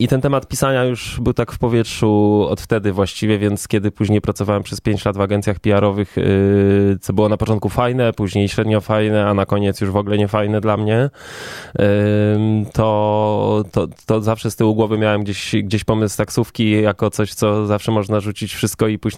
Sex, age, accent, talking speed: male, 20-39, native, 190 wpm